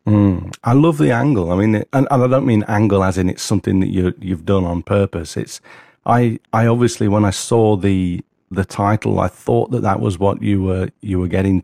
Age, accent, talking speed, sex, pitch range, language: 40-59, British, 225 wpm, male, 90-110 Hz, English